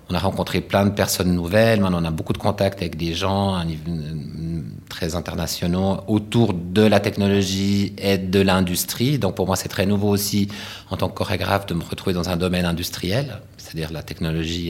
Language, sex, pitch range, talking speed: French, male, 85-105 Hz, 190 wpm